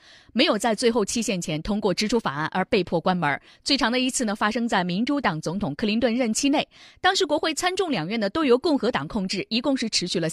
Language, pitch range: Chinese, 180-275 Hz